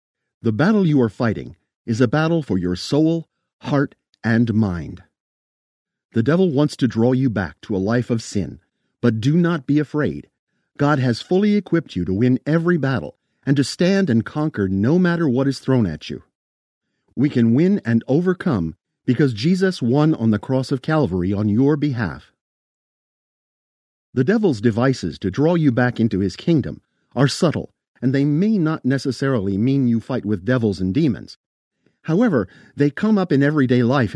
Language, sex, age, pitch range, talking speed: English, male, 50-69, 110-150 Hz, 175 wpm